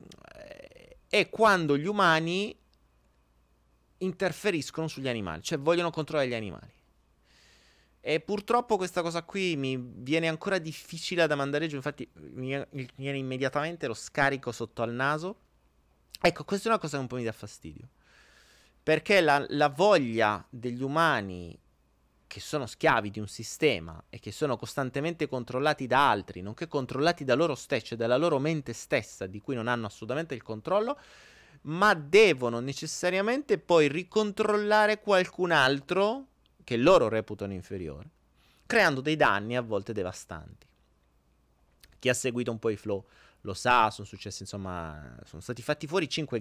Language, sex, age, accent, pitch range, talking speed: Italian, male, 30-49, native, 100-165 Hz, 145 wpm